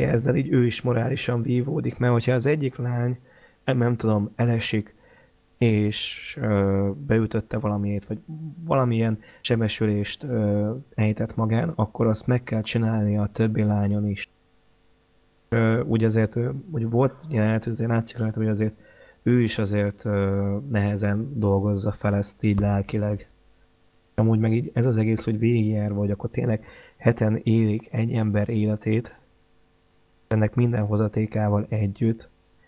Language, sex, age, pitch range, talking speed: Hungarian, male, 20-39, 105-120 Hz, 140 wpm